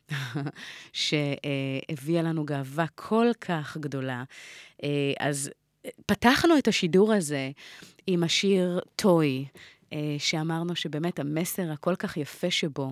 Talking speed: 110 wpm